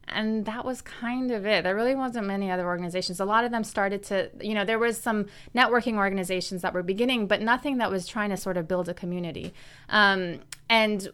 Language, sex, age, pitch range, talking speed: English, female, 20-39, 185-220 Hz, 220 wpm